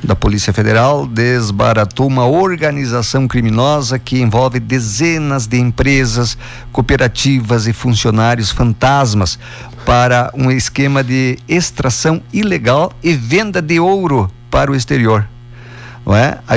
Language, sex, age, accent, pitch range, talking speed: Portuguese, male, 50-69, Brazilian, 120-145 Hz, 110 wpm